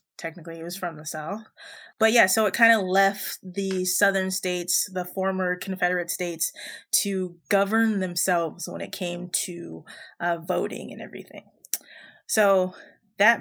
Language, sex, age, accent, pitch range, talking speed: English, female, 20-39, American, 180-205 Hz, 150 wpm